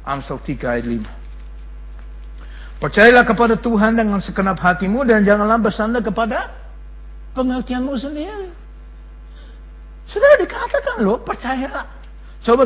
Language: Malay